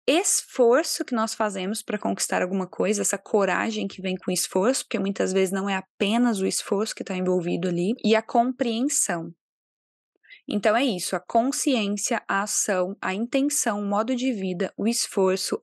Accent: Brazilian